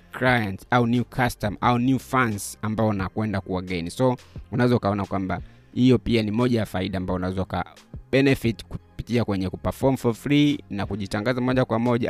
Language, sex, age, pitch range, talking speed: Swahili, male, 30-49, 95-120 Hz, 170 wpm